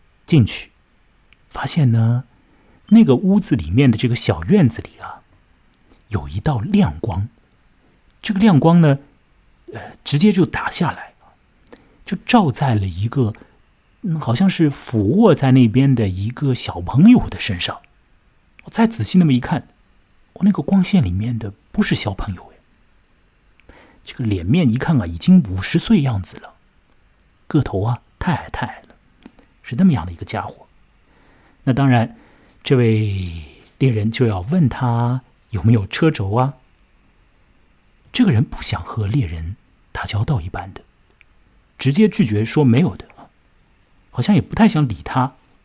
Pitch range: 100-150 Hz